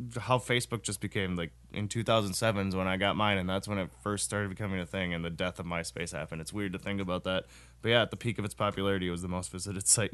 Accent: American